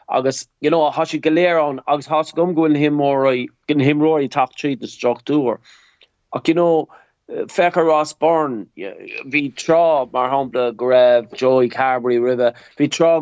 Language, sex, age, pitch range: English, male, 30-49, 115-145 Hz